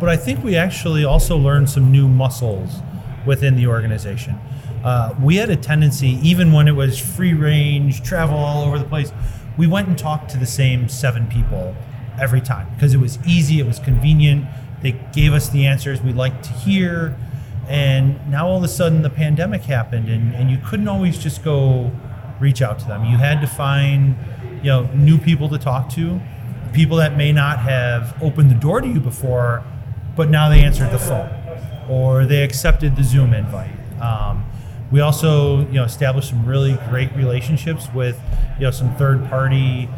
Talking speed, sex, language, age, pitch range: 190 wpm, male, English, 30-49, 120-145 Hz